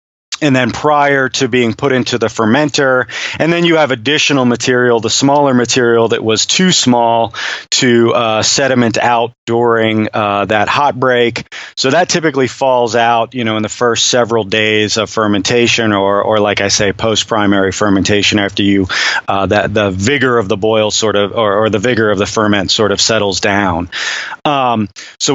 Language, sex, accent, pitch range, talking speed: English, male, American, 110-150 Hz, 180 wpm